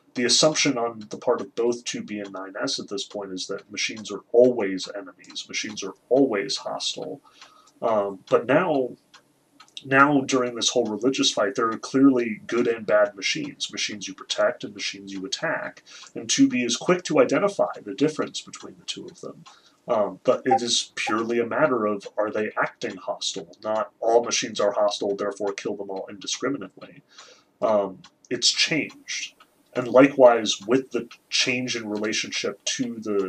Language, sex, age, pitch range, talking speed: English, male, 30-49, 100-125 Hz, 170 wpm